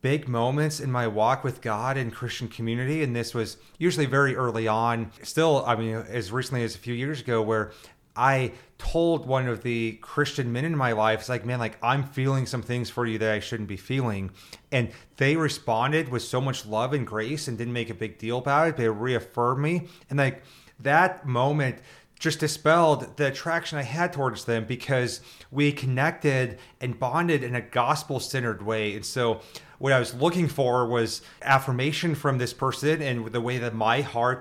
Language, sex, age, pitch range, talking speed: English, male, 30-49, 115-140 Hz, 195 wpm